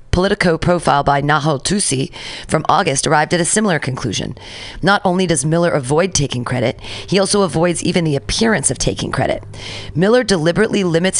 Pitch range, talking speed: 125-175 Hz, 165 wpm